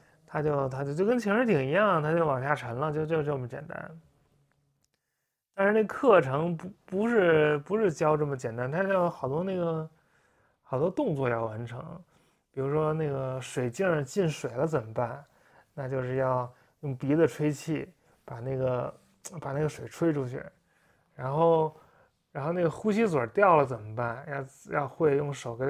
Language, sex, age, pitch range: English, male, 20-39, 135-170 Hz